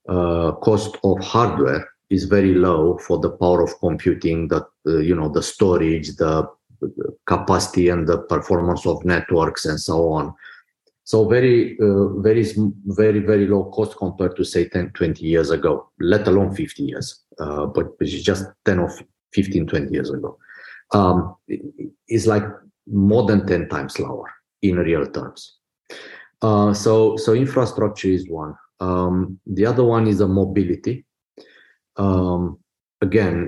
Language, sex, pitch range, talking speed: English, male, 90-110 Hz, 155 wpm